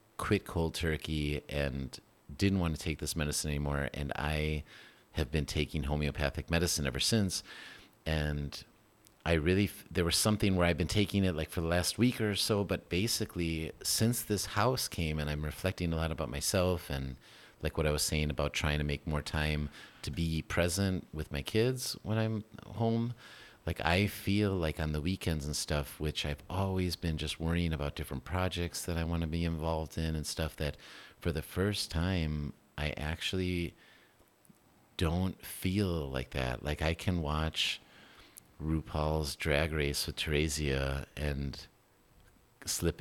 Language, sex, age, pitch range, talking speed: English, male, 30-49, 75-90 Hz, 170 wpm